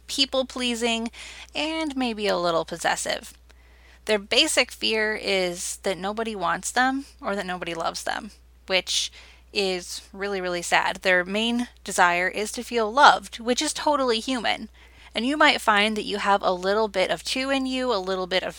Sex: female